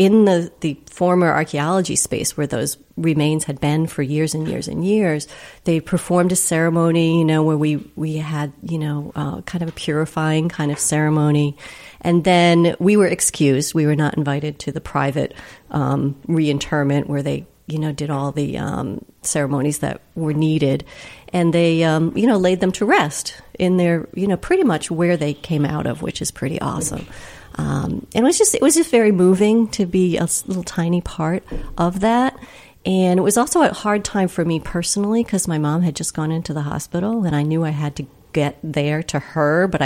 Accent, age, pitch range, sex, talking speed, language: American, 40-59, 150-180 Hz, female, 205 wpm, English